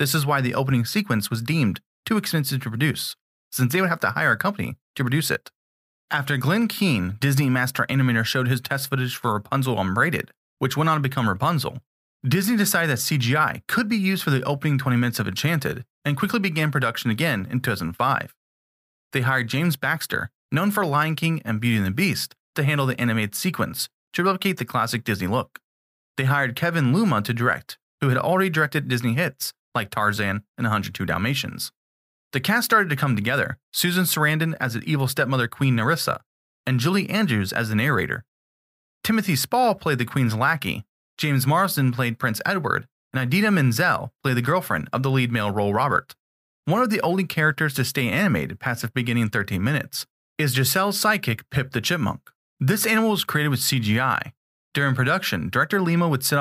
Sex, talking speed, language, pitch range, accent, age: male, 190 wpm, English, 120-165 Hz, American, 30-49